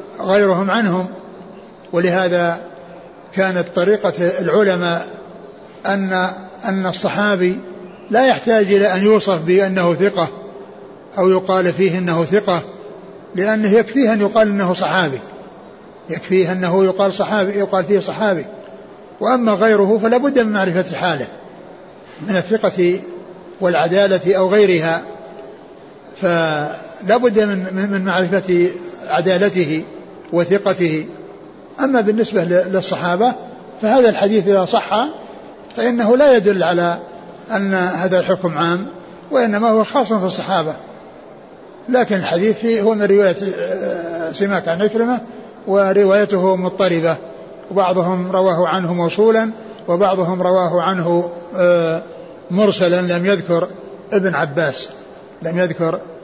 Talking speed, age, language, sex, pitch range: 100 wpm, 60-79, Arabic, male, 180-205 Hz